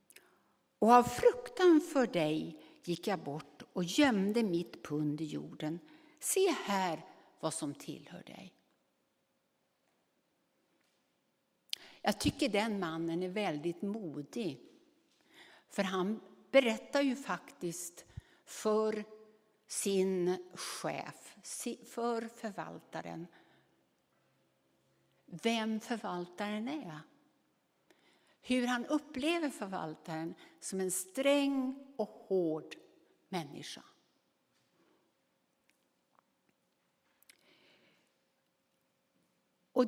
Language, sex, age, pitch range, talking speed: Dutch, female, 60-79, 170-250 Hz, 75 wpm